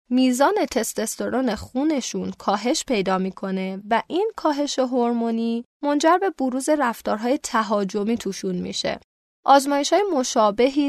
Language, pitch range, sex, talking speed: Persian, 205-265 Hz, female, 105 wpm